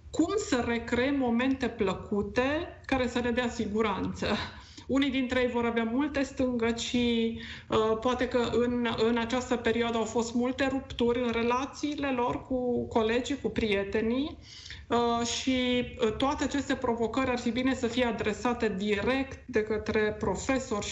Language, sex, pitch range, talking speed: Romanian, female, 220-255 Hz, 145 wpm